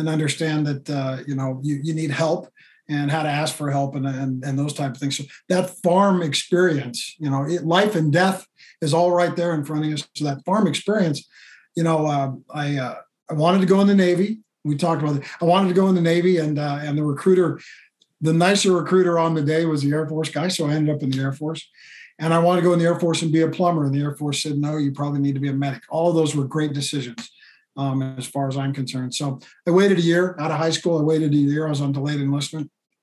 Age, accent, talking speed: 50-69, American, 270 wpm